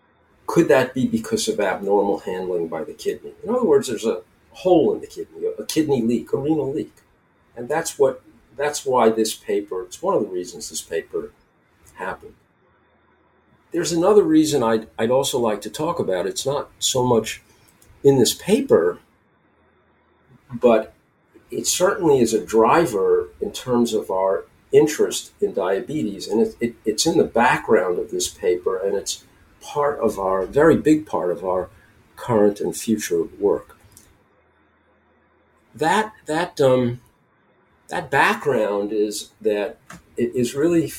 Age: 50-69